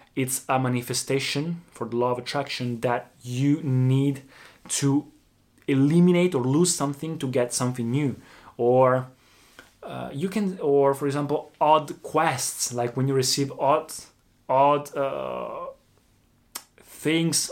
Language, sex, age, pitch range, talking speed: Italian, male, 20-39, 125-145 Hz, 125 wpm